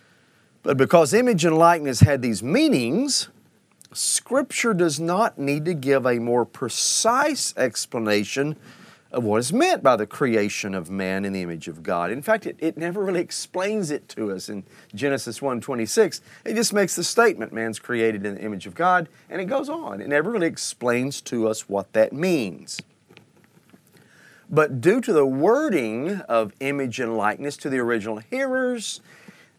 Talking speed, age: 170 wpm, 40-59